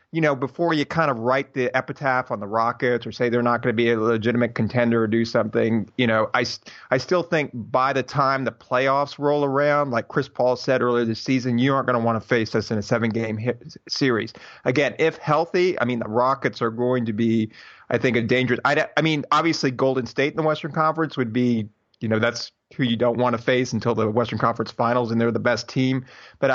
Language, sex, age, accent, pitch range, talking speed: English, male, 30-49, American, 120-140 Hz, 235 wpm